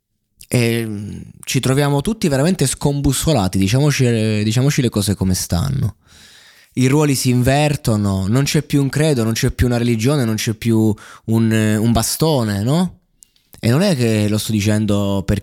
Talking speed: 160 wpm